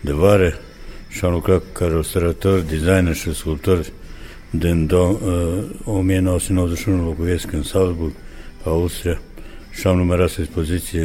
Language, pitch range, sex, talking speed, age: Romanian, 80-95 Hz, male, 115 wpm, 60-79